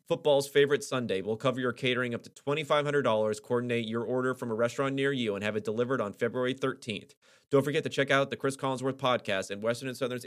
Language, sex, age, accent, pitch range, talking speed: English, male, 30-49, American, 110-135 Hz, 240 wpm